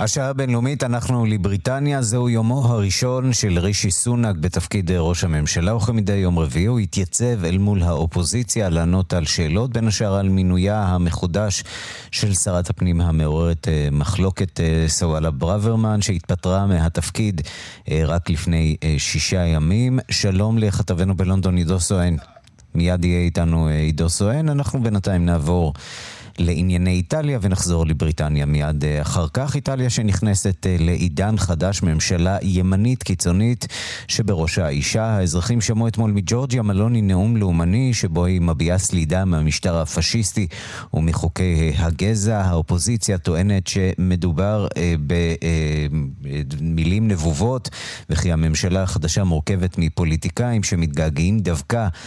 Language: Hebrew